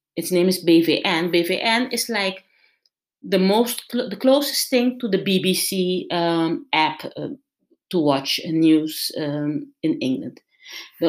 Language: English